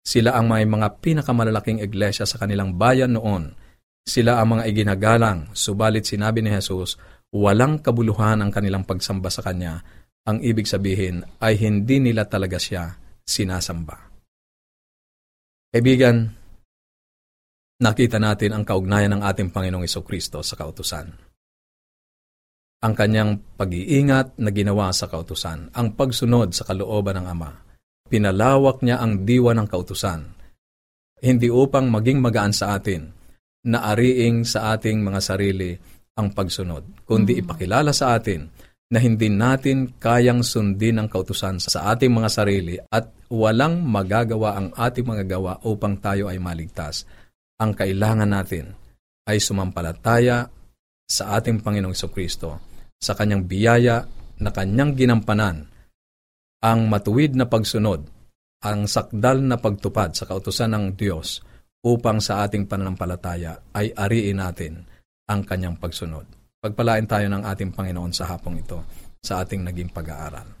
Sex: male